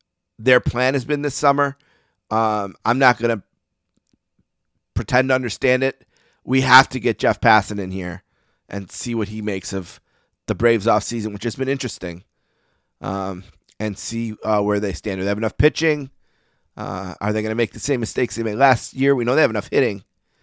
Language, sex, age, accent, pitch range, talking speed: English, male, 30-49, American, 100-130 Hz, 195 wpm